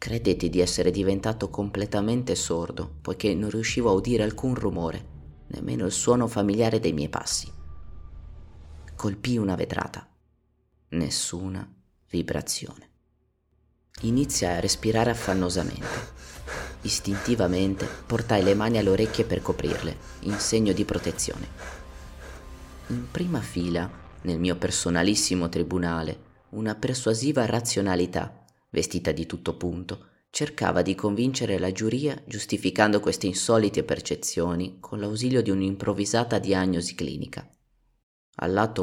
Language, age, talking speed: Italian, 30-49, 110 wpm